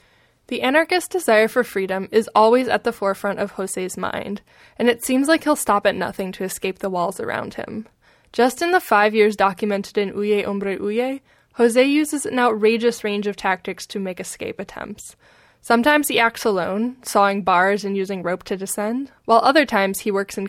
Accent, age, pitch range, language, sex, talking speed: American, 10-29, 195-240 Hz, English, female, 190 wpm